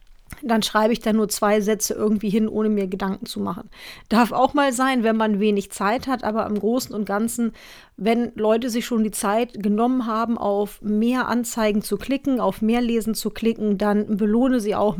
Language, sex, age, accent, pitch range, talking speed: German, female, 40-59, German, 200-235 Hz, 200 wpm